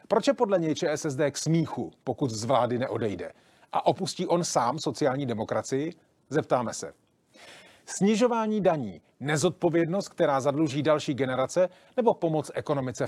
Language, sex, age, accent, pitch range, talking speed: Czech, male, 40-59, native, 135-165 Hz, 135 wpm